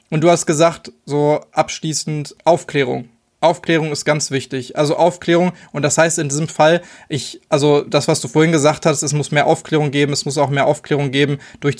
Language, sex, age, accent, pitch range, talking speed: German, male, 20-39, German, 140-160 Hz, 200 wpm